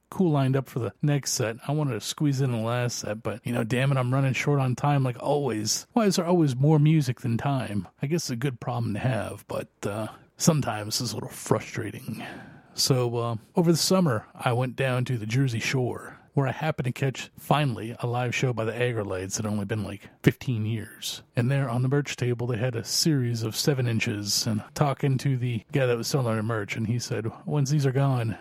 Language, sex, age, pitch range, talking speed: English, male, 30-49, 120-145 Hz, 230 wpm